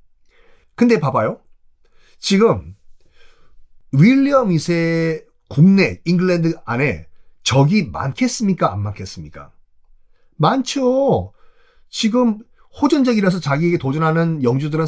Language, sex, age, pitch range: Korean, male, 40-59, 110-185 Hz